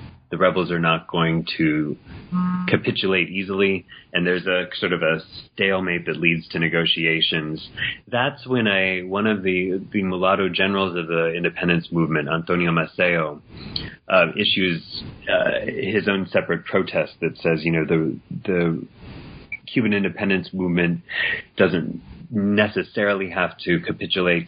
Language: English